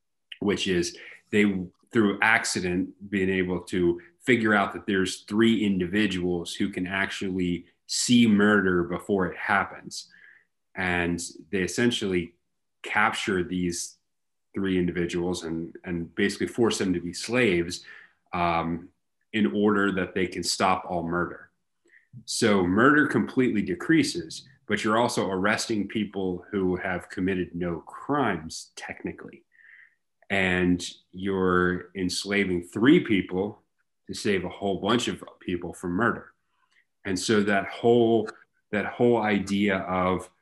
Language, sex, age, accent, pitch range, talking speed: English, male, 30-49, American, 85-100 Hz, 125 wpm